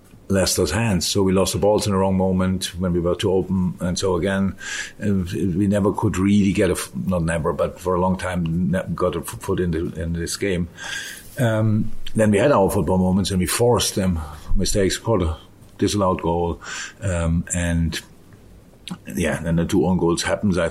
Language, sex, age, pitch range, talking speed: English, male, 50-69, 85-100 Hz, 190 wpm